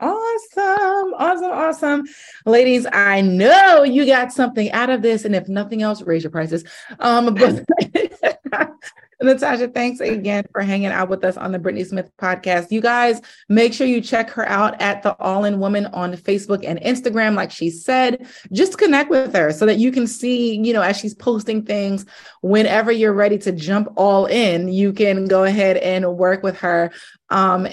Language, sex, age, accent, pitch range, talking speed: English, female, 30-49, American, 195-245 Hz, 185 wpm